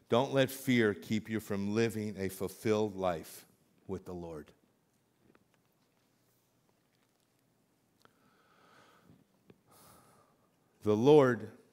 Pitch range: 105-125 Hz